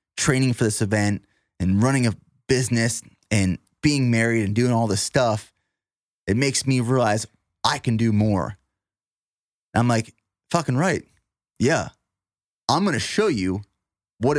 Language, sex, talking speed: English, male, 145 wpm